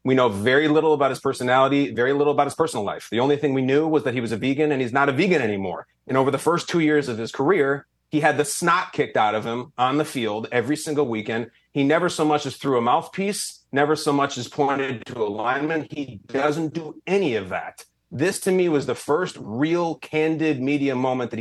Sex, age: male, 30-49